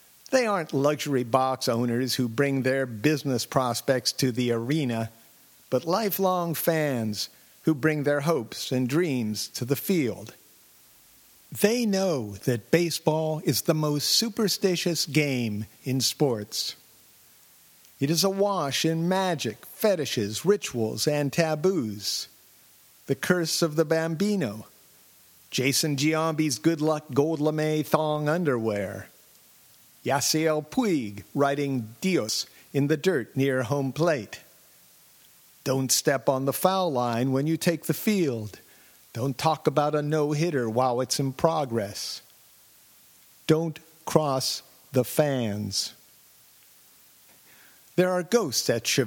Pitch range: 125-160 Hz